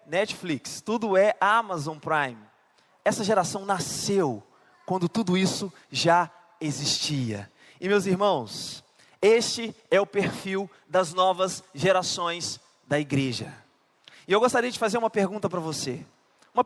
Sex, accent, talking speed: male, Brazilian, 125 wpm